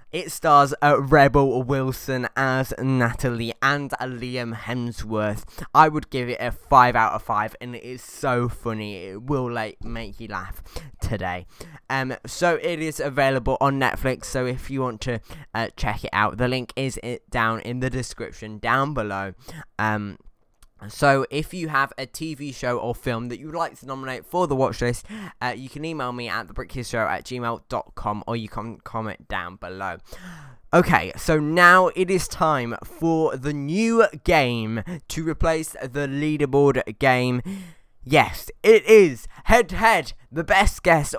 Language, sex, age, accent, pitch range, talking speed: English, male, 10-29, British, 120-165 Hz, 165 wpm